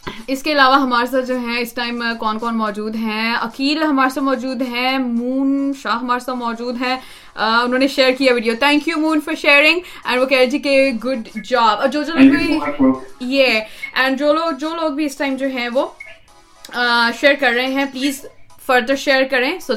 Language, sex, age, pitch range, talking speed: Urdu, female, 20-39, 230-280 Hz, 185 wpm